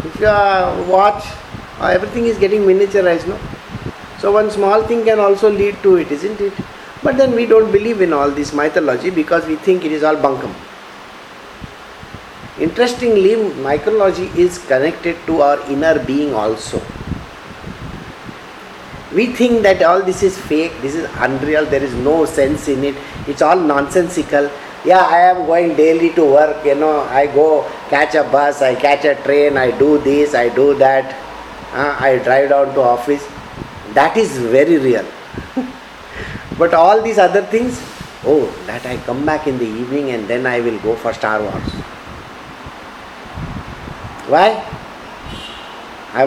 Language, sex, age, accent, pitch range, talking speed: English, male, 50-69, Indian, 140-195 Hz, 155 wpm